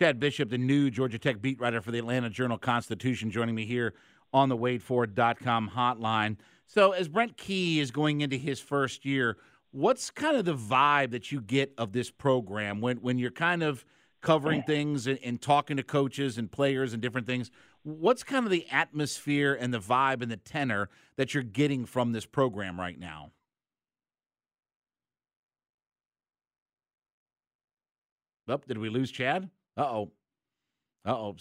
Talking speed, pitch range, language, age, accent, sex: 155 wpm, 110-150 Hz, English, 50-69, American, male